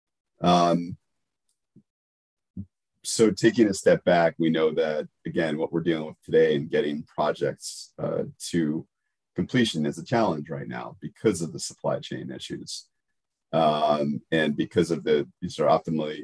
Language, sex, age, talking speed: English, male, 40-59, 150 wpm